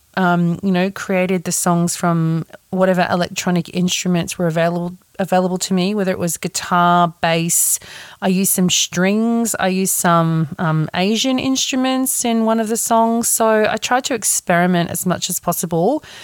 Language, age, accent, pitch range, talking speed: English, 30-49, Australian, 180-230 Hz, 165 wpm